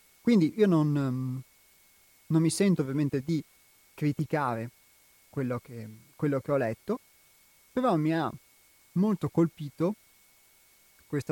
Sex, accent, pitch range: male, native, 130-160 Hz